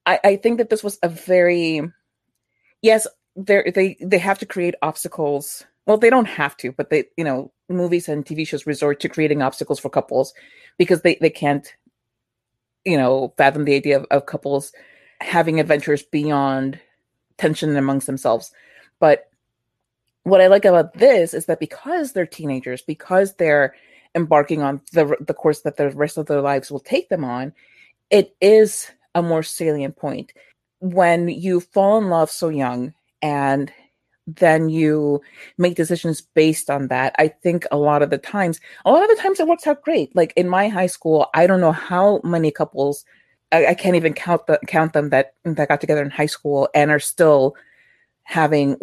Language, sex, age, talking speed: English, female, 30-49, 180 wpm